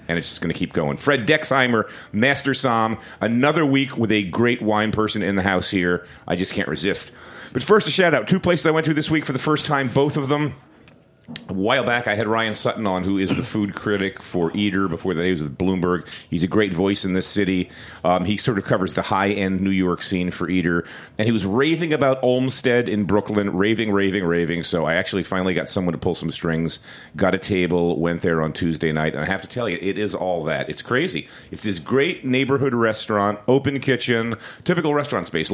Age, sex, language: 40-59, male, English